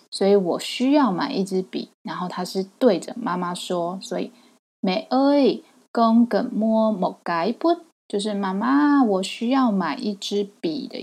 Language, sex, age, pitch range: Chinese, female, 20-39, 190-260 Hz